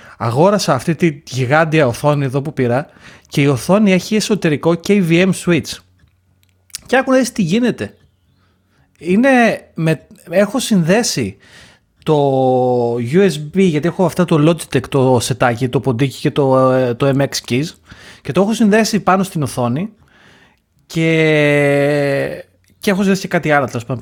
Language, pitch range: Greek, 130-195 Hz